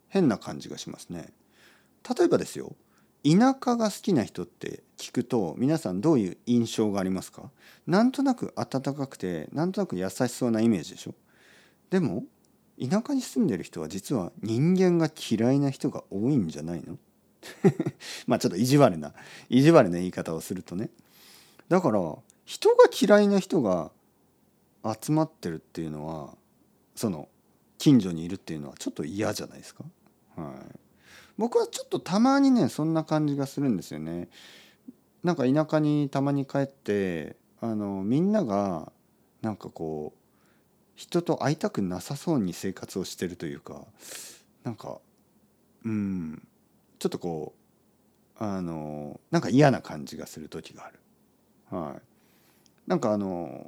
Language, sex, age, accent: Japanese, male, 40-59, native